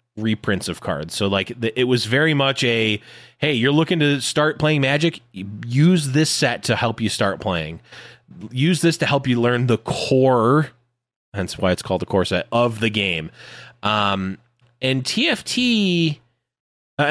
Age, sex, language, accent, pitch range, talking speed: 20-39, male, English, American, 105-140 Hz, 165 wpm